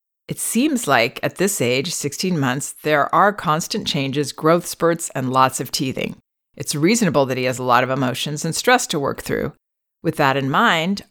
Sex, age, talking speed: female, 40-59, 195 wpm